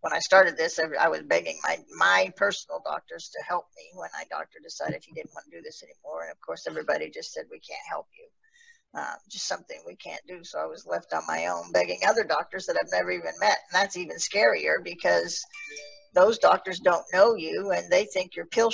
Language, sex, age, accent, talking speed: English, female, 50-69, American, 225 wpm